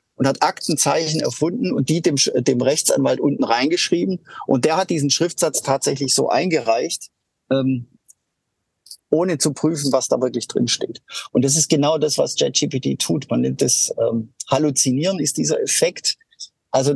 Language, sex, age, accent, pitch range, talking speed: German, male, 50-69, German, 135-170 Hz, 160 wpm